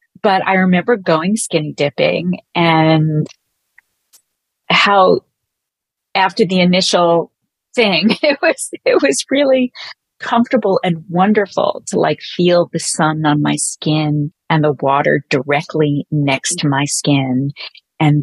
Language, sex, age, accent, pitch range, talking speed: English, female, 40-59, American, 145-180 Hz, 120 wpm